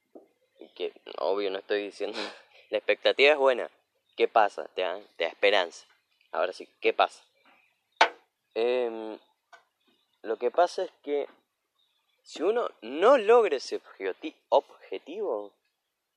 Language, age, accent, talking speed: Spanish, 20-39, Argentinian, 110 wpm